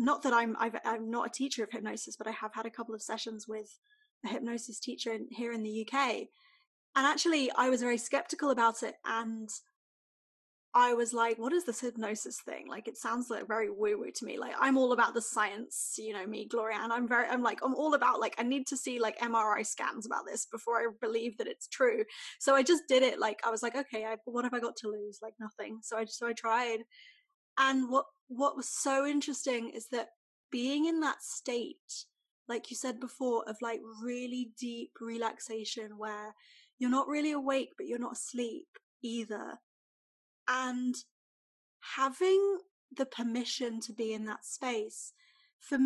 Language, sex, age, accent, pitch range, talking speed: English, female, 10-29, British, 230-280 Hz, 200 wpm